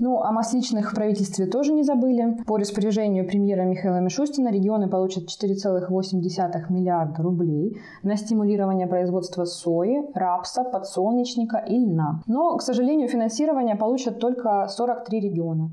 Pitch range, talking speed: 185-225 Hz, 130 wpm